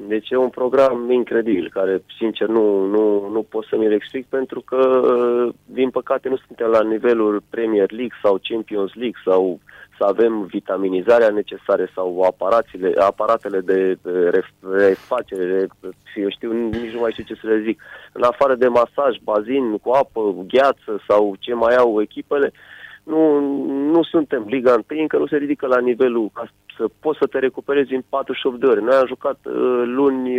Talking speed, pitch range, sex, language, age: 160 wpm, 115-150 Hz, male, Romanian, 30-49